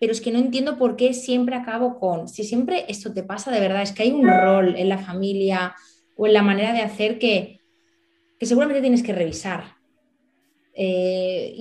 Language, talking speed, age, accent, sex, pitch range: Spanish, 195 wpm, 20-39, Spanish, female, 185-235 Hz